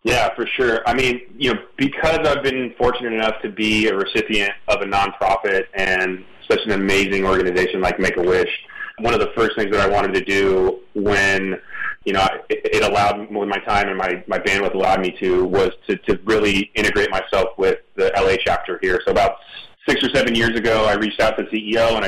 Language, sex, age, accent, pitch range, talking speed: English, male, 20-39, American, 100-120 Hz, 210 wpm